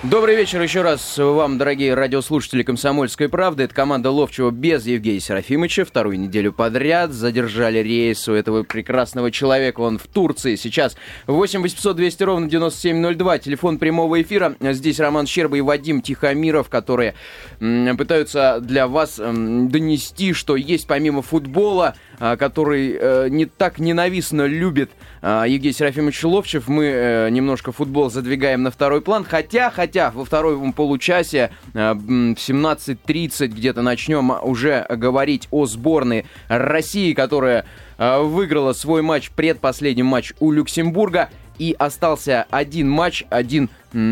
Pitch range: 125-160 Hz